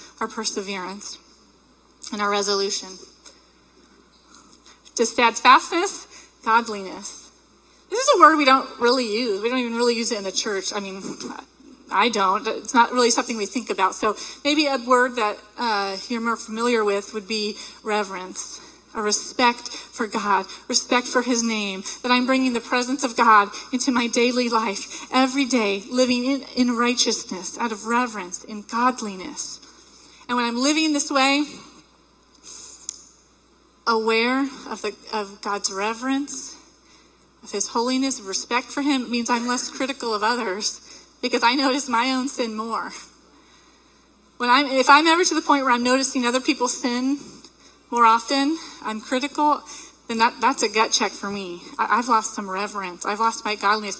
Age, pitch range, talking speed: 30-49, 215-265 Hz, 165 wpm